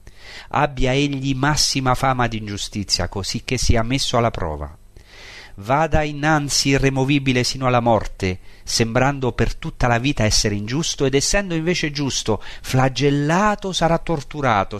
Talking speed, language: 130 wpm, Italian